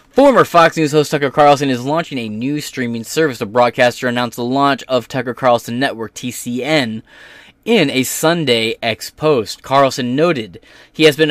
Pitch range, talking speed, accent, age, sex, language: 130-215 Hz, 170 wpm, American, 20-39, male, English